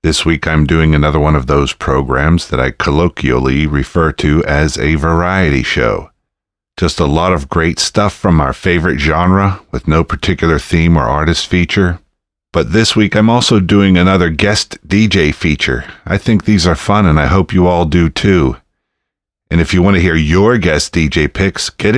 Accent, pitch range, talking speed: American, 80-95 Hz, 185 wpm